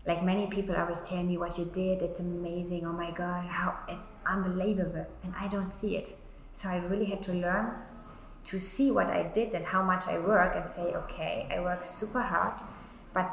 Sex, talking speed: female, 205 wpm